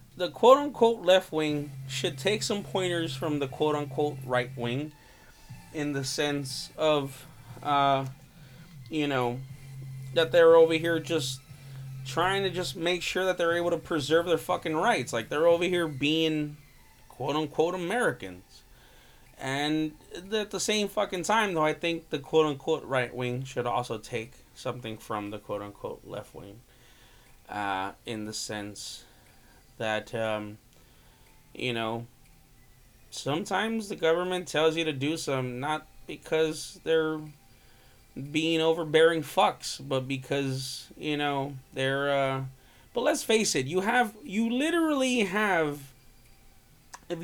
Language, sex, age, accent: English, male, 20-39, American